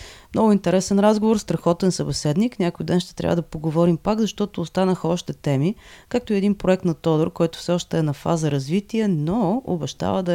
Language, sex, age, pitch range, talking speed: Bulgarian, female, 30-49, 155-200 Hz, 185 wpm